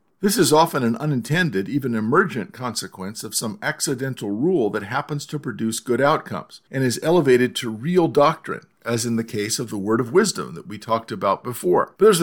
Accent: American